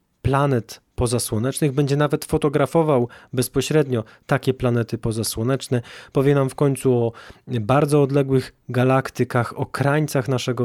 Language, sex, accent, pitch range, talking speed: Polish, male, native, 120-140 Hz, 115 wpm